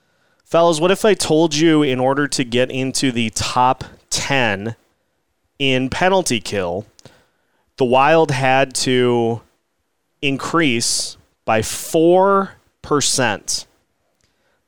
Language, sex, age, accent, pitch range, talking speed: English, male, 30-49, American, 120-160 Hz, 100 wpm